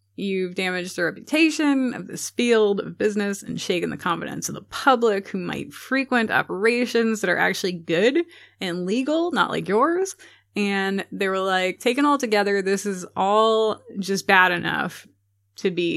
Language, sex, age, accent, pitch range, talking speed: English, female, 20-39, American, 175-220 Hz, 165 wpm